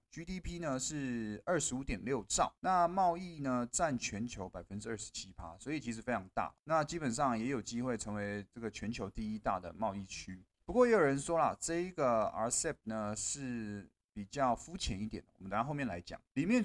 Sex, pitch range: male, 110-155 Hz